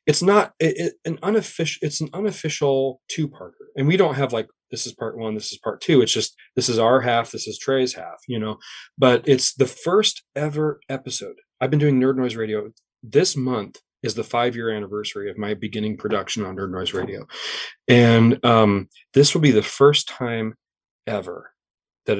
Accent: American